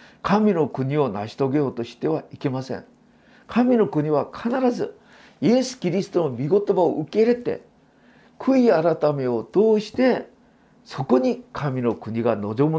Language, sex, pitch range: Japanese, male, 130-205 Hz